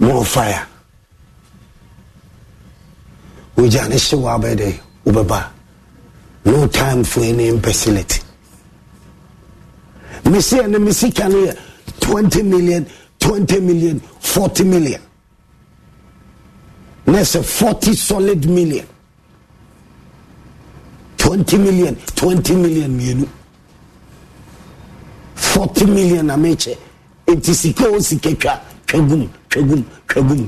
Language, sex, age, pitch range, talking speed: English, male, 50-69, 140-190 Hz, 65 wpm